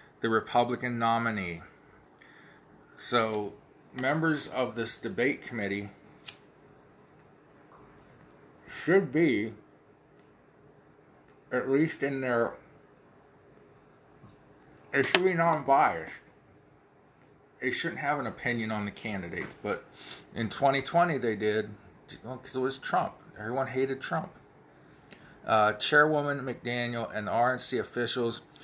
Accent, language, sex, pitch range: American, English, male, 115-135 Hz